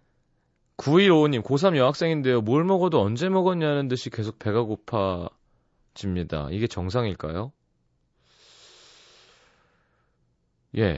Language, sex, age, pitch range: Korean, male, 30-49, 95-140 Hz